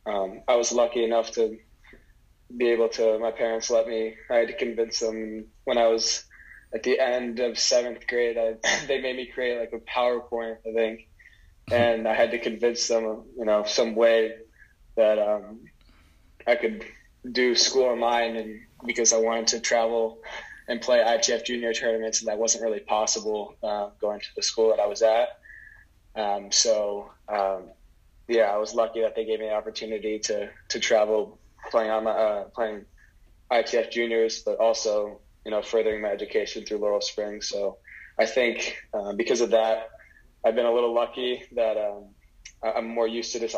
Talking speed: 180 wpm